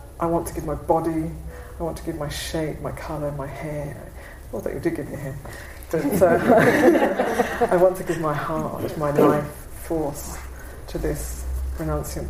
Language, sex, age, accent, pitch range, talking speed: English, female, 40-59, British, 135-175 Hz, 170 wpm